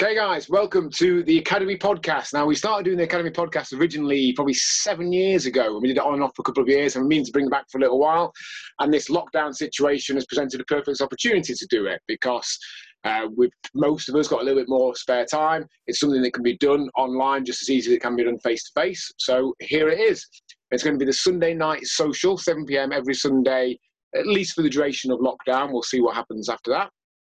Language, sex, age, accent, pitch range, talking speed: English, male, 30-49, British, 130-150 Hz, 245 wpm